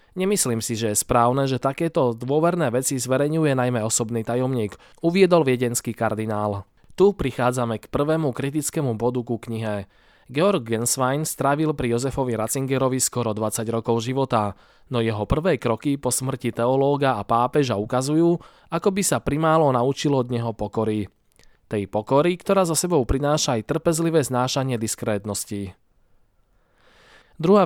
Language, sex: Slovak, male